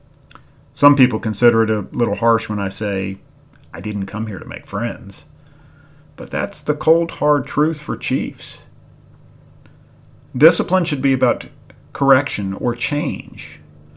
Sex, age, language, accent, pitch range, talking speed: male, 40-59, English, American, 105-130 Hz, 140 wpm